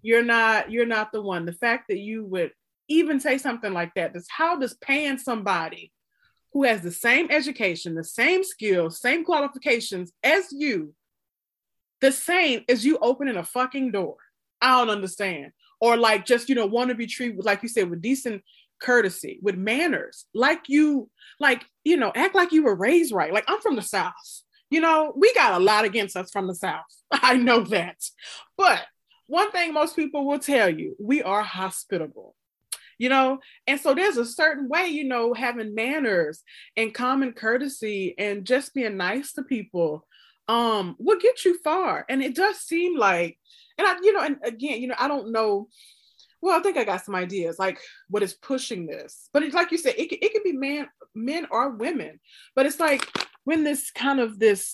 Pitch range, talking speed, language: 210-300 Hz, 195 wpm, English